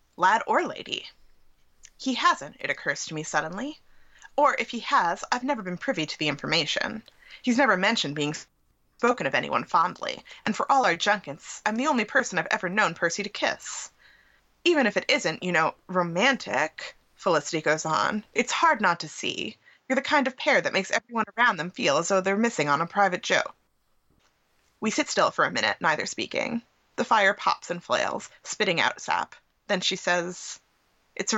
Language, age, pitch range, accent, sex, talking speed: English, 20-39, 165-235 Hz, American, female, 190 wpm